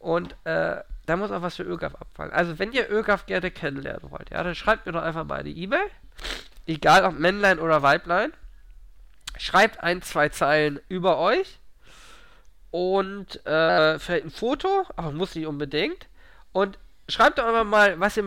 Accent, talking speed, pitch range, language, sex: German, 170 wpm, 150-210 Hz, German, male